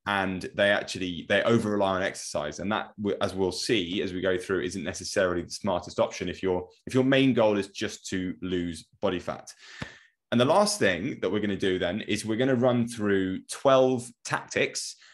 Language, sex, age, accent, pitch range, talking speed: English, male, 20-39, British, 95-120 Hz, 205 wpm